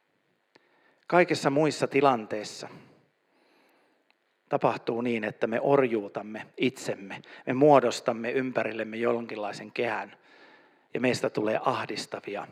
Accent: native